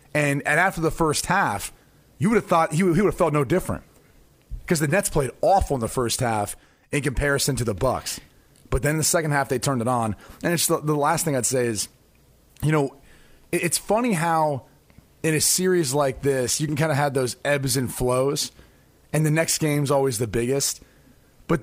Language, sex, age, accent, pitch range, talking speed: English, male, 30-49, American, 130-160 Hz, 220 wpm